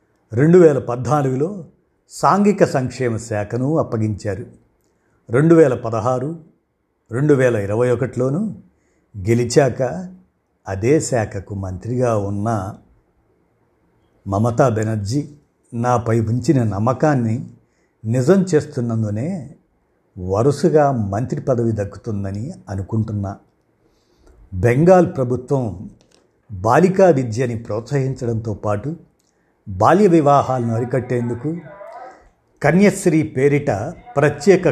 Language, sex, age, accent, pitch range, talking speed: Telugu, male, 50-69, native, 110-150 Hz, 65 wpm